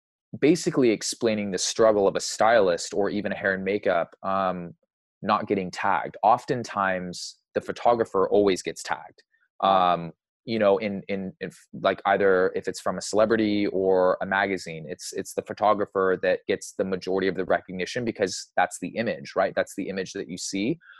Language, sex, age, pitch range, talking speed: English, male, 20-39, 90-105 Hz, 170 wpm